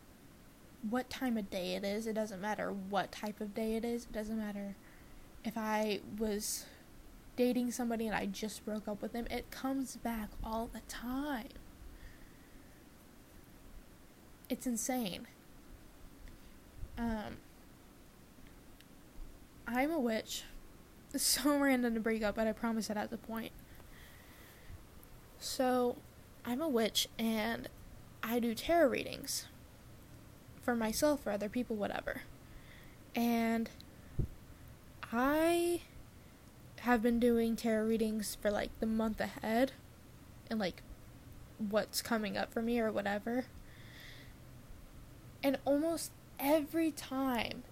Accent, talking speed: American, 120 wpm